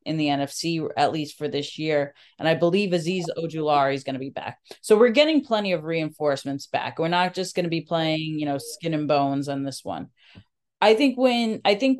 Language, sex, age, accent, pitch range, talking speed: English, female, 20-39, American, 155-190 Hz, 225 wpm